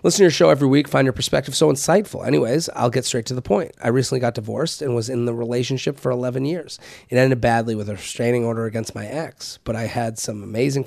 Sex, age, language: male, 30-49, English